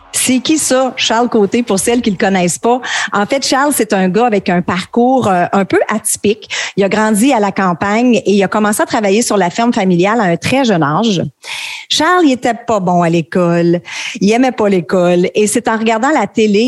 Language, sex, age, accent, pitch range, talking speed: French, female, 40-59, Canadian, 190-240 Hz, 220 wpm